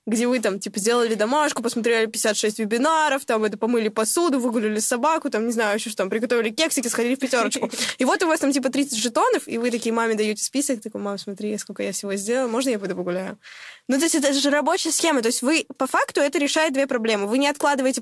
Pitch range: 225-280 Hz